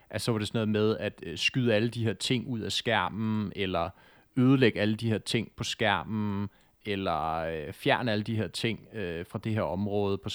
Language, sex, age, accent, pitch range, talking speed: Danish, male, 30-49, native, 105-125 Hz, 205 wpm